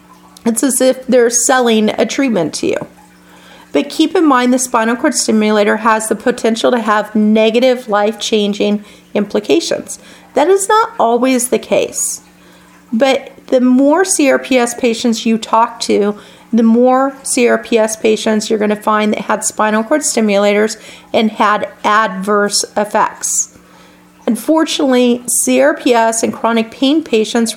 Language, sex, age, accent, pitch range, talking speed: English, female, 40-59, American, 215-255 Hz, 135 wpm